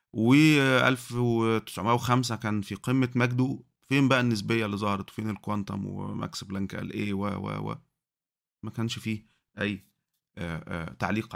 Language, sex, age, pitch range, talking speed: Arabic, male, 30-49, 105-140 Hz, 115 wpm